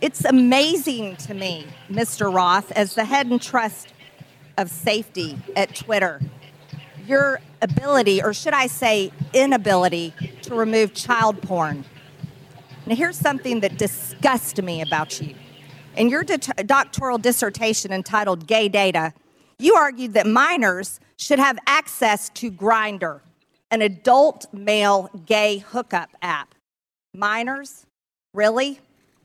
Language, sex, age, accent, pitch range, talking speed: English, female, 50-69, American, 195-260 Hz, 120 wpm